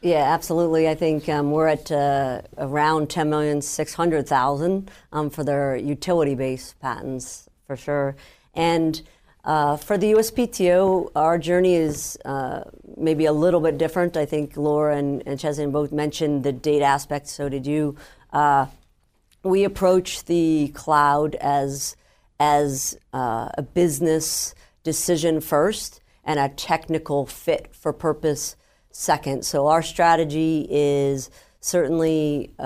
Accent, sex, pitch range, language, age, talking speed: American, female, 145-165 Hz, English, 50-69, 125 wpm